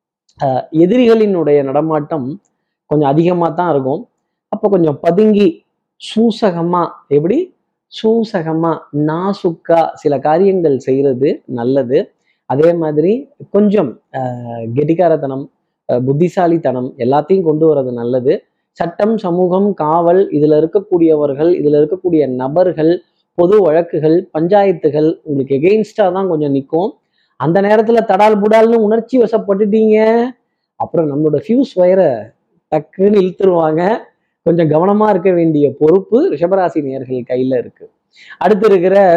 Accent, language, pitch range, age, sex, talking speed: native, Tamil, 155-200 Hz, 20-39, male, 100 wpm